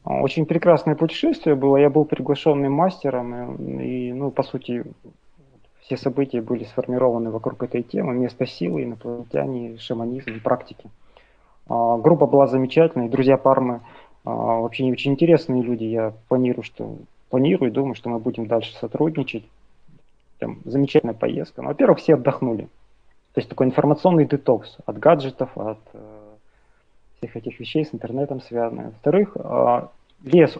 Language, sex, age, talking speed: Russian, male, 30-49, 130 wpm